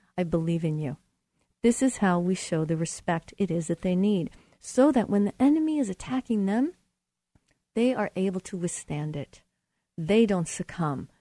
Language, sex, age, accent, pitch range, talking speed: English, female, 40-59, American, 160-210 Hz, 175 wpm